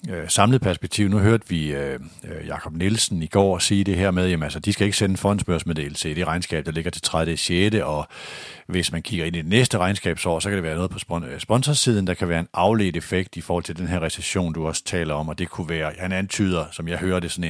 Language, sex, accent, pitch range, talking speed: Danish, male, native, 85-105 Hz, 240 wpm